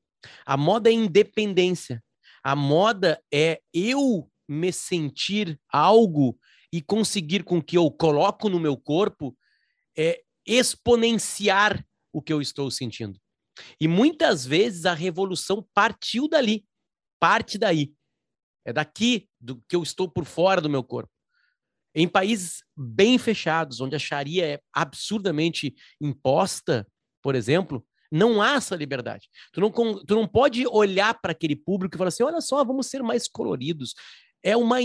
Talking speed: 145 wpm